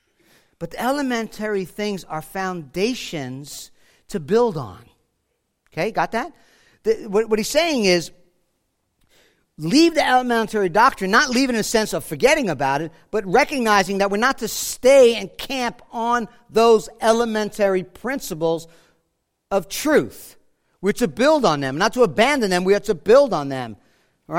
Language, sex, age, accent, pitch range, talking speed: English, male, 50-69, American, 170-240 Hz, 155 wpm